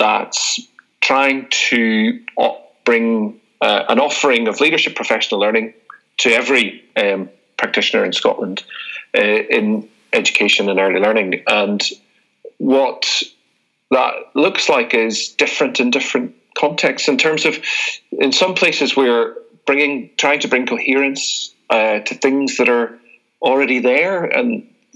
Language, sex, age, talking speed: English, male, 40-59, 125 wpm